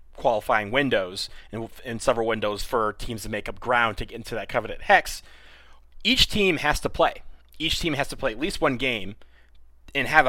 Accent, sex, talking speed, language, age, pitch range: American, male, 200 wpm, English, 30-49, 105-135 Hz